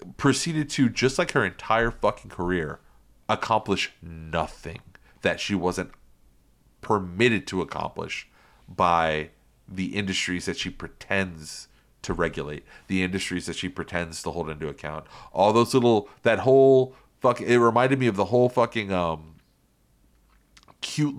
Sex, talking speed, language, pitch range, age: male, 135 wpm, English, 90-130 Hz, 30-49